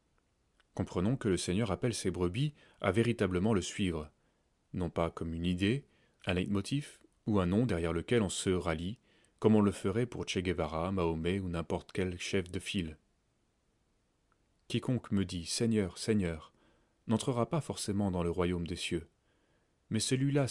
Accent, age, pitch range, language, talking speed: French, 30-49, 90-110 Hz, French, 160 wpm